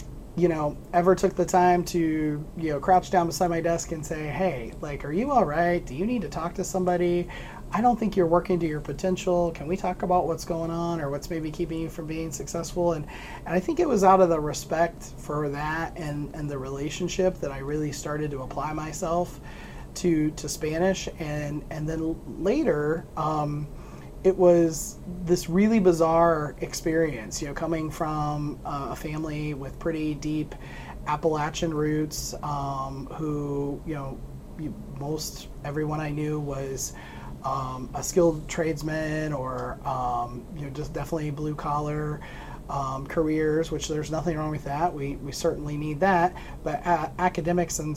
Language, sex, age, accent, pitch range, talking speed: English, male, 30-49, American, 145-170 Hz, 175 wpm